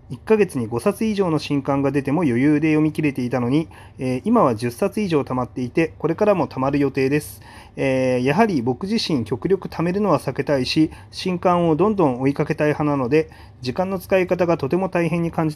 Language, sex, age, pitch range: Japanese, male, 30-49, 120-170 Hz